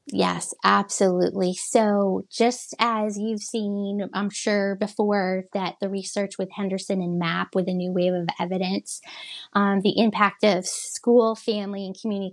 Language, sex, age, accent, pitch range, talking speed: English, female, 20-39, American, 190-245 Hz, 150 wpm